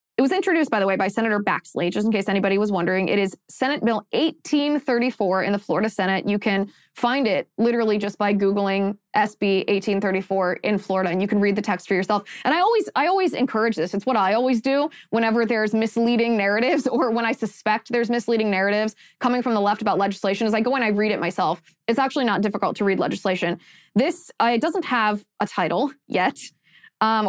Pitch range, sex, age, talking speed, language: 195-255 Hz, female, 20-39, 210 wpm, English